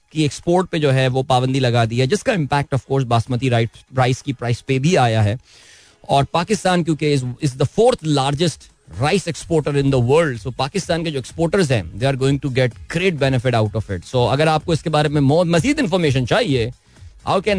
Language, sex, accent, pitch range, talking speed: Hindi, male, native, 125-165 Hz, 80 wpm